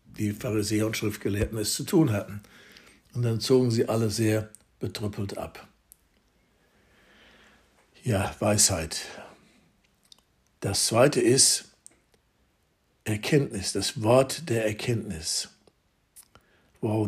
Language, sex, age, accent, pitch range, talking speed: German, male, 60-79, German, 105-120 Hz, 95 wpm